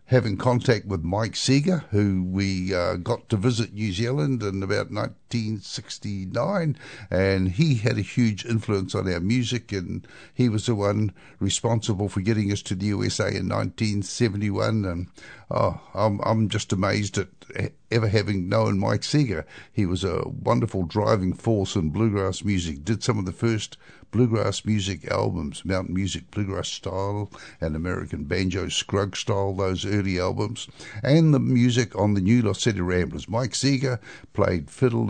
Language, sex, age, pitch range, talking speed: English, male, 60-79, 95-120 Hz, 160 wpm